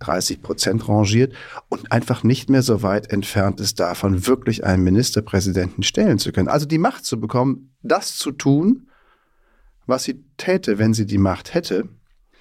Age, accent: 40-59, German